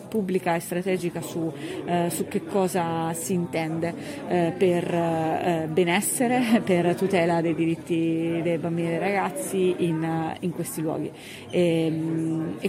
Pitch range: 170-195 Hz